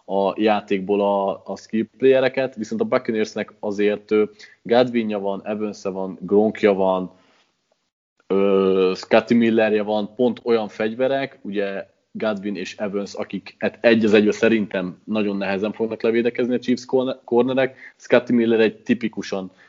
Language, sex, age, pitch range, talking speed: Hungarian, male, 20-39, 100-120 Hz, 130 wpm